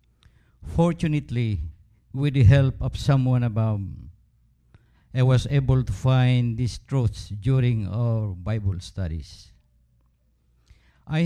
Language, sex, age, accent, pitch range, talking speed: English, male, 50-69, Filipino, 90-135 Hz, 100 wpm